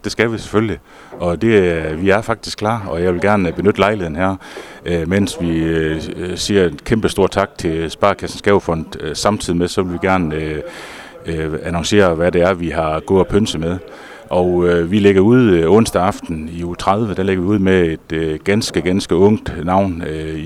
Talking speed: 195 wpm